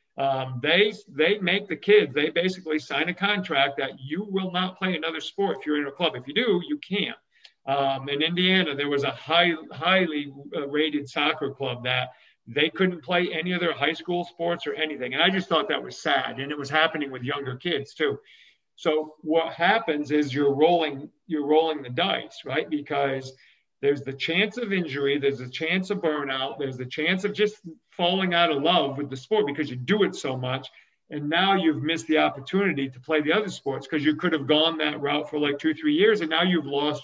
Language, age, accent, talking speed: English, 50-69, American, 215 wpm